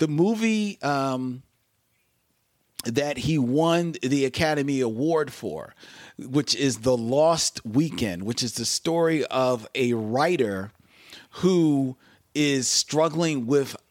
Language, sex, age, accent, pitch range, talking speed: English, male, 40-59, American, 115-145 Hz, 110 wpm